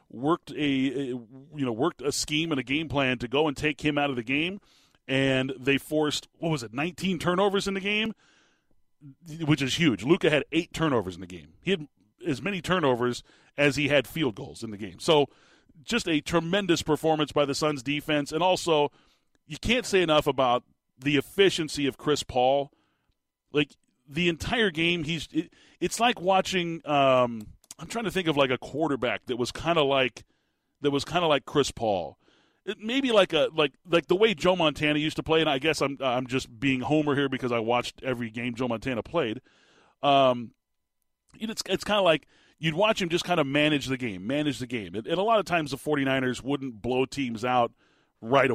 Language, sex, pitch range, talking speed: English, male, 130-165 Hz, 200 wpm